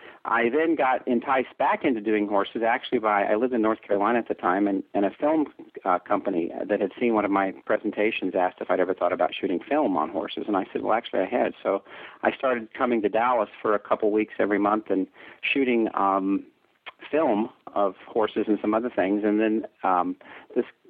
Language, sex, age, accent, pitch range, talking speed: English, male, 50-69, American, 100-115 Hz, 210 wpm